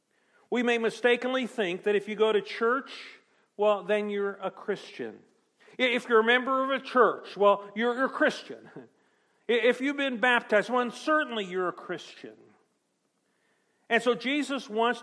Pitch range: 185-230 Hz